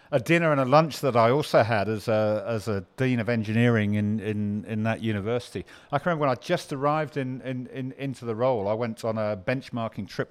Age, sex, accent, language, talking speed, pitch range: 50-69, male, British, English, 235 wpm, 110-140 Hz